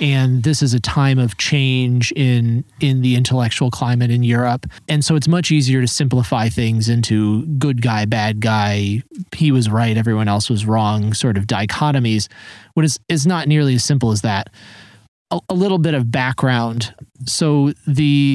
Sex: male